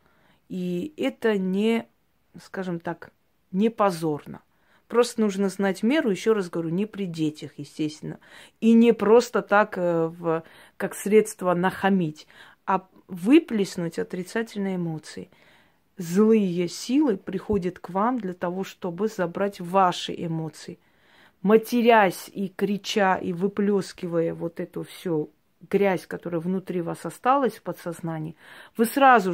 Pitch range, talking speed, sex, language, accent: 175-225 Hz, 115 wpm, female, Russian, native